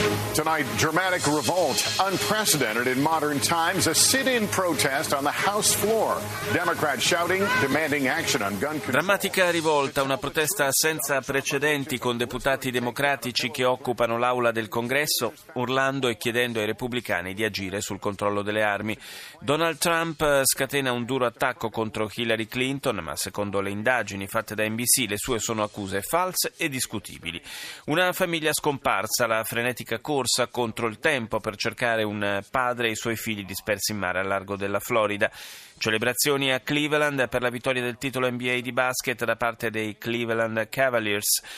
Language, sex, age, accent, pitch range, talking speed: Italian, male, 40-59, native, 110-140 Hz, 125 wpm